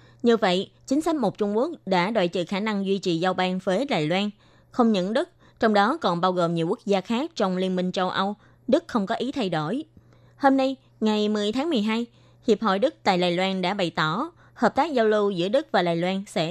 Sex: female